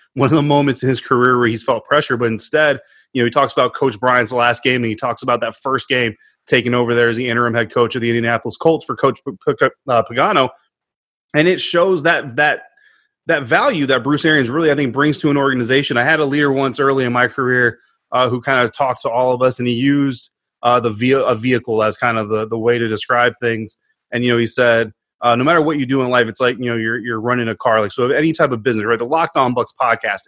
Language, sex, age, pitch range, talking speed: English, male, 30-49, 115-140 Hz, 265 wpm